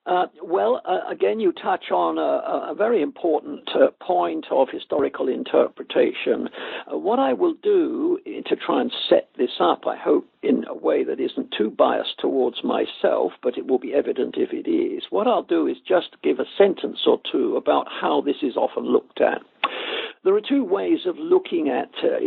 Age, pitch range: 60-79, 325-430 Hz